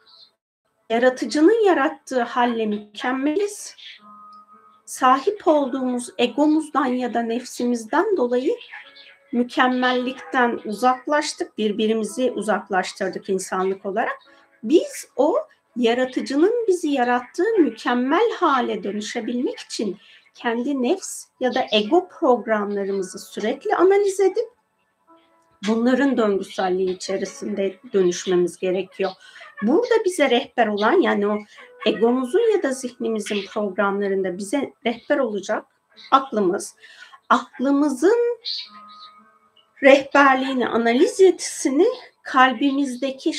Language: Turkish